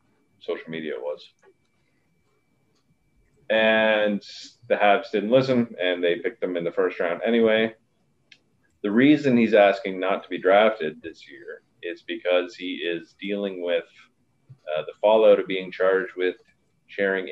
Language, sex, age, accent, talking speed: English, male, 30-49, American, 140 wpm